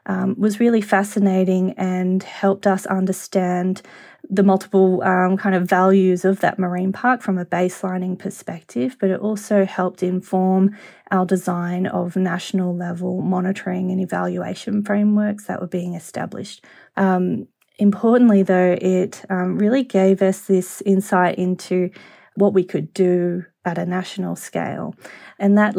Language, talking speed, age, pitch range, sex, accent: English, 140 wpm, 20-39, 180-195 Hz, female, Australian